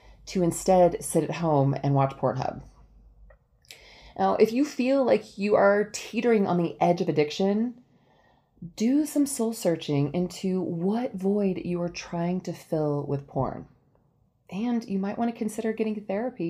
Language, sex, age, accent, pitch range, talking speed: English, female, 30-49, American, 160-225 Hz, 155 wpm